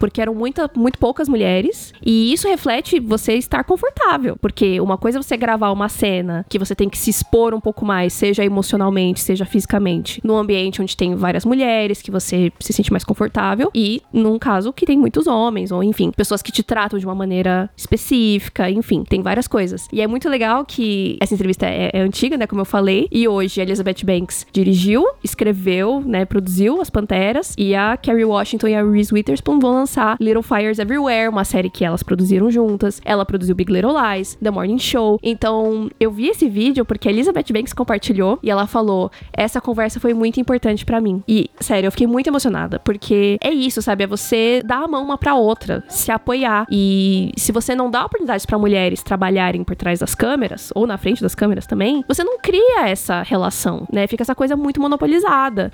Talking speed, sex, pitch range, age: 200 wpm, female, 200-245 Hz, 20-39